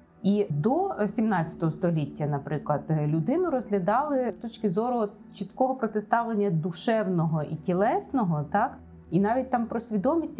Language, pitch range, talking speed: Ukrainian, 155-215 Hz, 120 wpm